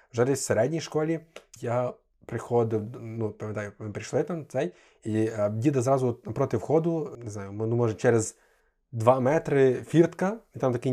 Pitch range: 115-145 Hz